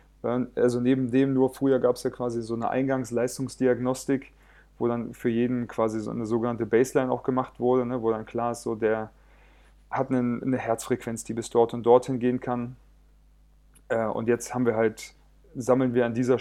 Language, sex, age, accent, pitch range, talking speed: German, male, 30-49, German, 110-130 Hz, 185 wpm